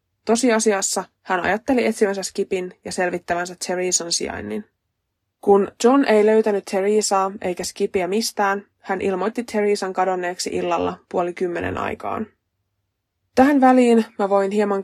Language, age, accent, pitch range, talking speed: Finnish, 20-39, native, 180-215 Hz, 120 wpm